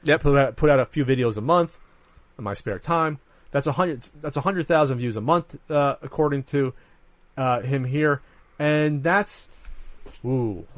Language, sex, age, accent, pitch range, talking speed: English, male, 30-49, American, 120-160 Hz, 155 wpm